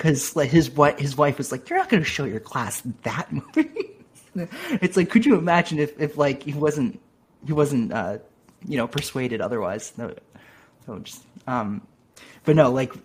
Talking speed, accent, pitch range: 185 wpm, American, 120-150 Hz